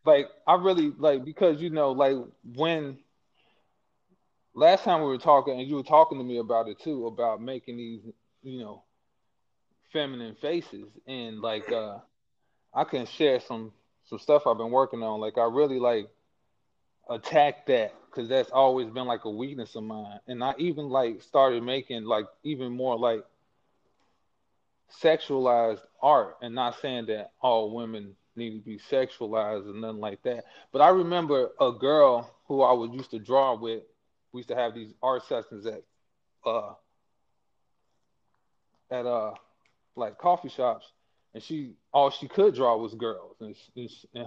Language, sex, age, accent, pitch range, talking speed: English, male, 20-39, American, 115-145 Hz, 165 wpm